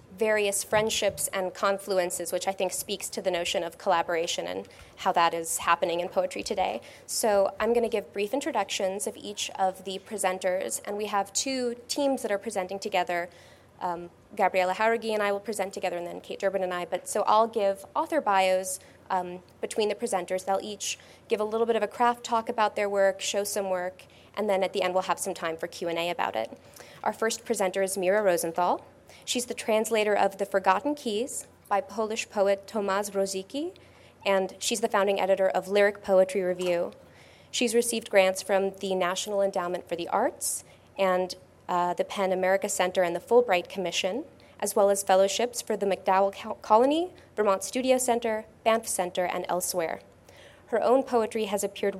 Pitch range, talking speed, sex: 185-220 Hz, 190 wpm, female